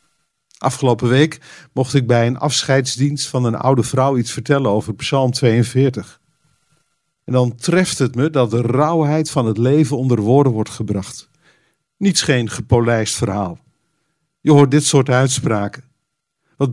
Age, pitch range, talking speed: 50-69, 120-150 Hz, 145 wpm